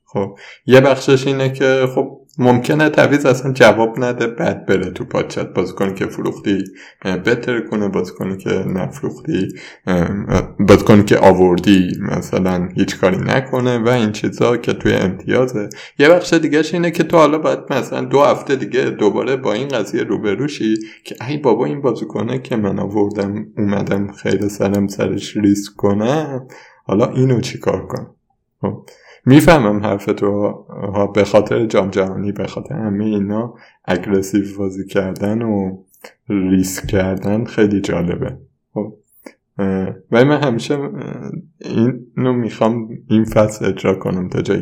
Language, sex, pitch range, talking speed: Persian, male, 100-130 Hz, 135 wpm